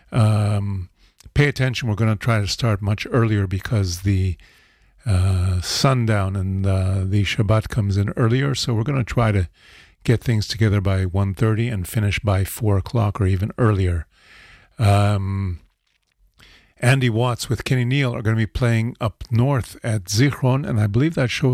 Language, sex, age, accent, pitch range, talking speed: English, male, 50-69, American, 95-115 Hz, 175 wpm